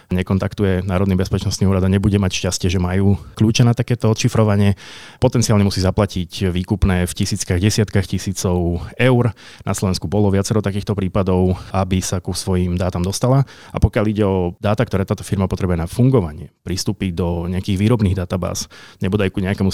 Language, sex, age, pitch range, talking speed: Slovak, male, 30-49, 95-110 Hz, 165 wpm